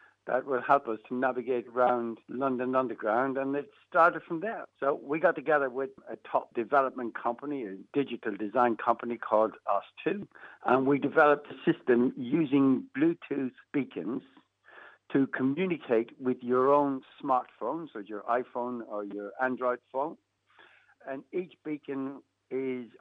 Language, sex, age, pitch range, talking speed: English, male, 60-79, 120-145 Hz, 140 wpm